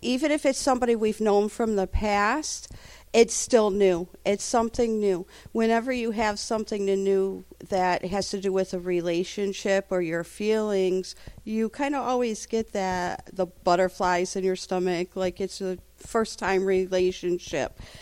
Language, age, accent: English, 50-69, American